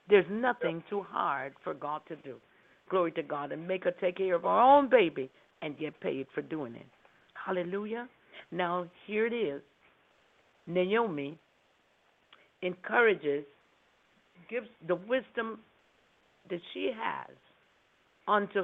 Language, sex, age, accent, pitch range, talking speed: English, female, 60-79, American, 175-245 Hz, 130 wpm